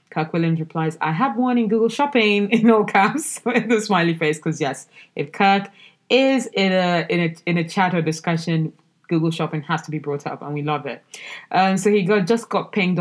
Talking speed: 220 wpm